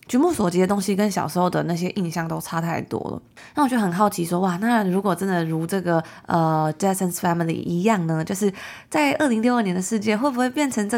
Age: 20-39